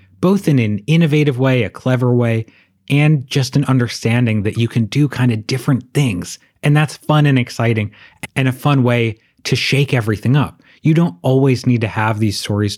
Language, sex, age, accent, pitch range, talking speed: English, male, 30-49, American, 105-140 Hz, 195 wpm